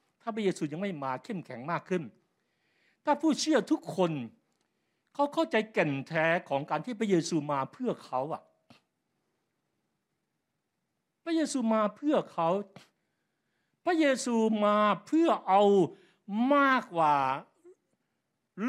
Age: 60-79